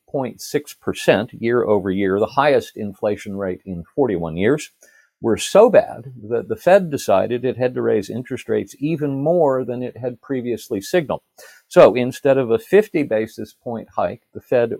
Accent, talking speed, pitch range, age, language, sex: American, 165 wpm, 105-150 Hz, 50-69, English, male